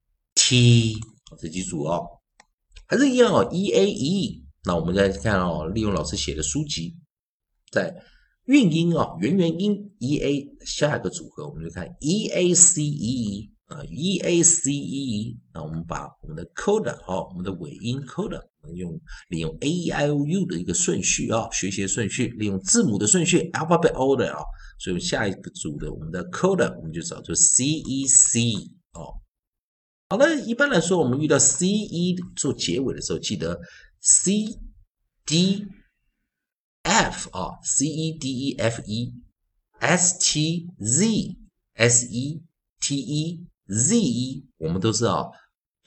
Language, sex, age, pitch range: Chinese, male, 50-69, 105-170 Hz